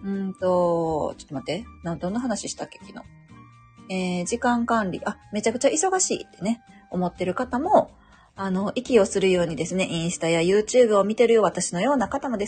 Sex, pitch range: female, 180-255 Hz